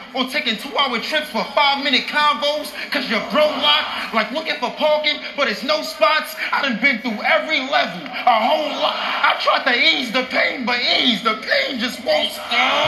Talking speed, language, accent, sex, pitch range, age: 215 wpm, English, American, male, 240-295 Hz, 20-39